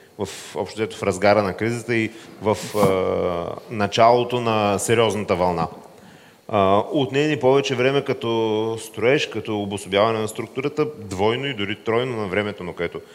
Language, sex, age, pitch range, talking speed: Bulgarian, male, 30-49, 100-125 Hz, 135 wpm